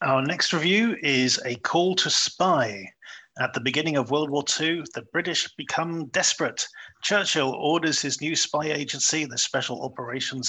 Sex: male